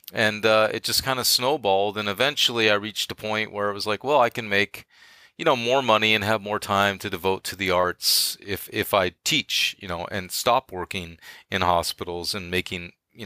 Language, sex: English, male